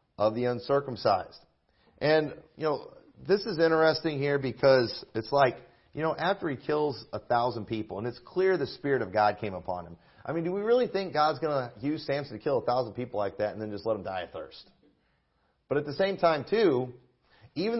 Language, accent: English, American